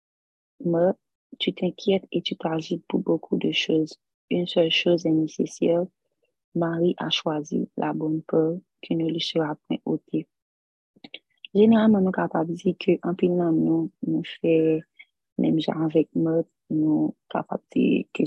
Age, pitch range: 30-49, 155-180 Hz